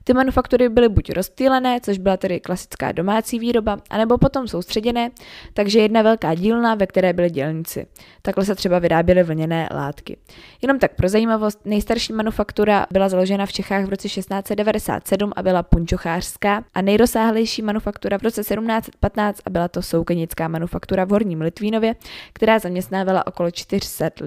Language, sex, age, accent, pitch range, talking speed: Czech, female, 20-39, native, 180-225 Hz, 155 wpm